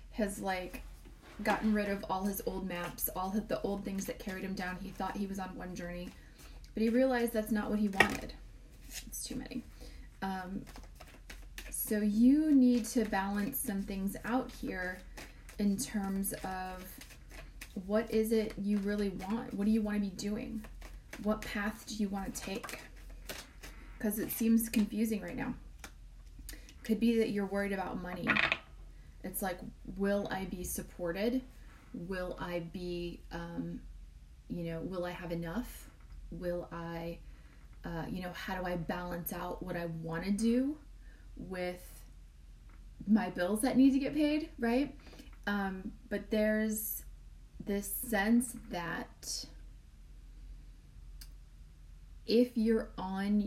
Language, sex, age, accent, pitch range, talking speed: English, female, 30-49, American, 180-220 Hz, 145 wpm